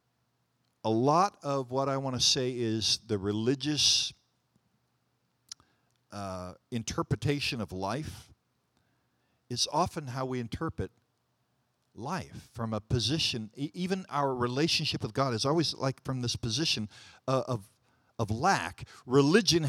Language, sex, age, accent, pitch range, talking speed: English, male, 50-69, American, 120-155 Hz, 120 wpm